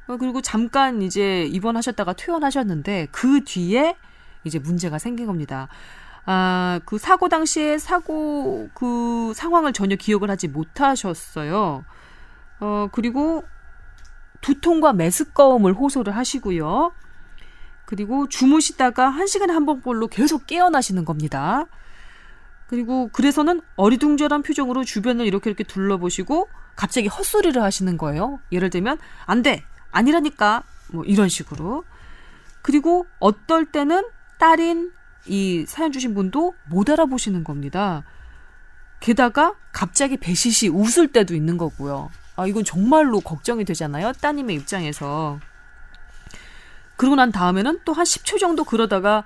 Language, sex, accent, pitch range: Korean, female, native, 185-295 Hz